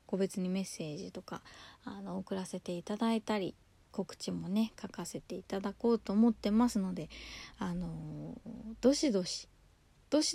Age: 20-39